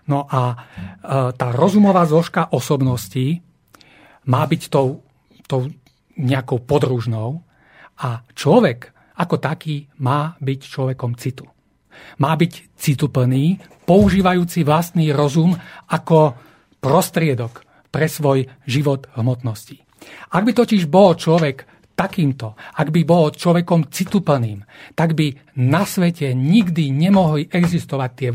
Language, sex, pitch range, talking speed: Slovak, male, 130-170 Hz, 110 wpm